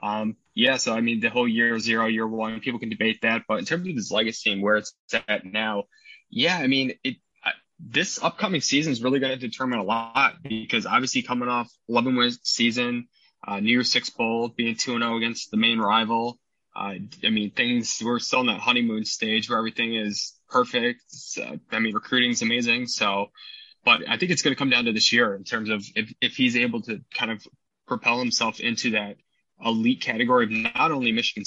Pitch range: 110-130 Hz